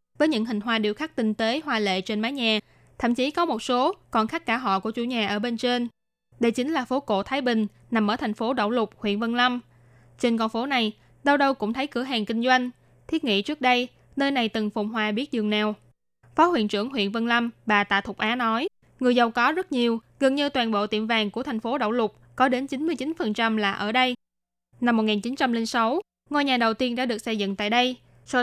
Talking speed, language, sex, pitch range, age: 240 wpm, Vietnamese, female, 215-260 Hz, 20-39